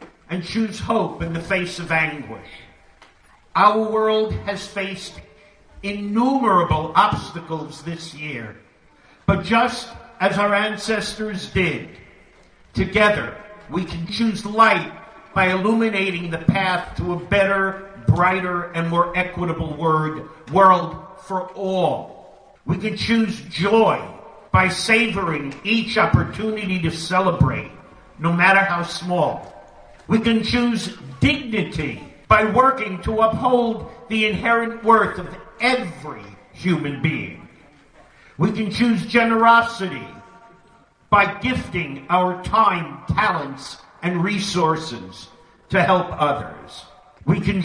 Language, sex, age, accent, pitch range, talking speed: English, male, 50-69, American, 170-215 Hz, 110 wpm